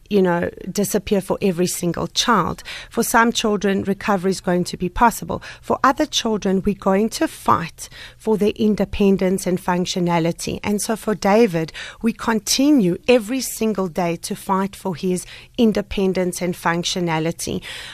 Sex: female